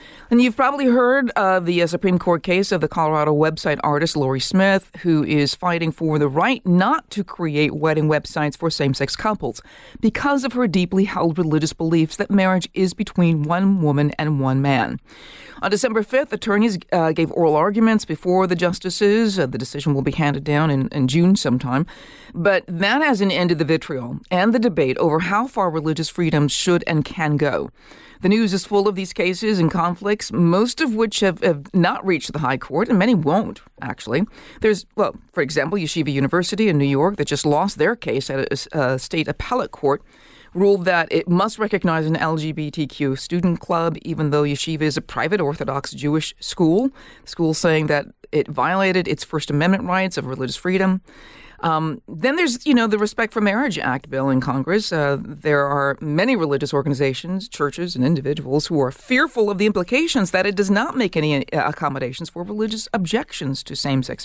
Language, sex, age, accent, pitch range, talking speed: English, female, 50-69, American, 150-200 Hz, 190 wpm